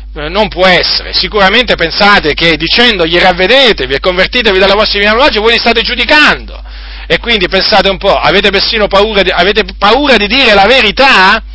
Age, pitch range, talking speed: 40-59, 175-235 Hz, 170 wpm